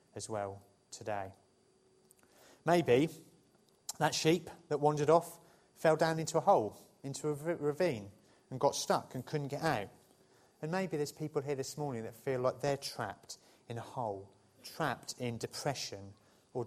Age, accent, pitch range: 30-49, British, 120-160 Hz